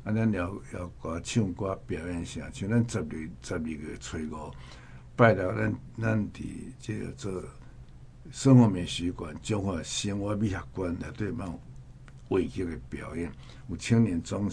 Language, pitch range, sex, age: Chinese, 90-120 Hz, male, 60-79